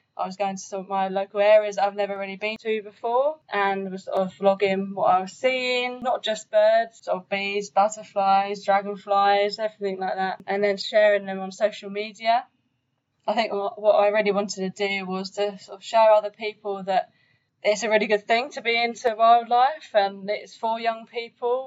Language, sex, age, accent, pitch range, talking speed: English, female, 10-29, British, 195-225 Hz, 200 wpm